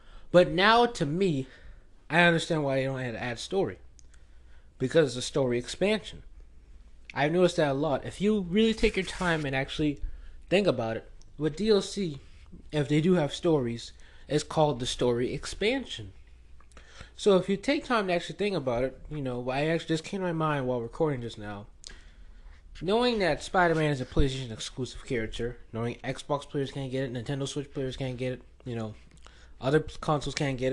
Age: 20-39